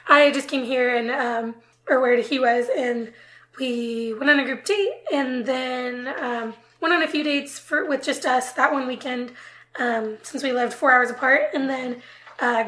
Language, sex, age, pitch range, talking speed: English, female, 20-39, 250-300 Hz, 200 wpm